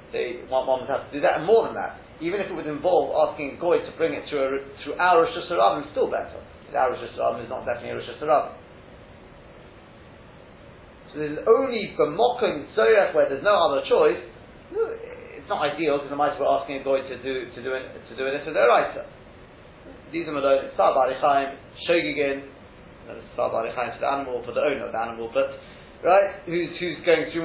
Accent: British